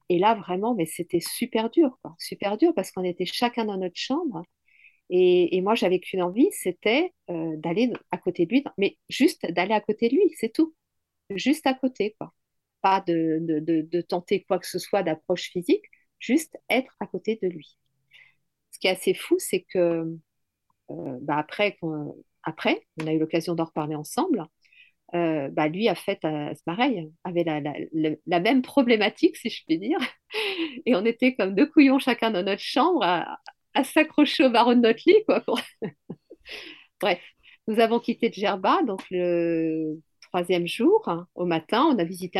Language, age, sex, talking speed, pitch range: French, 50-69, female, 190 wpm, 170-250 Hz